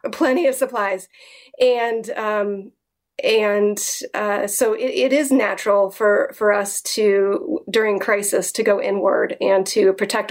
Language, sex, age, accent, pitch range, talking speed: English, female, 30-49, American, 200-230 Hz, 140 wpm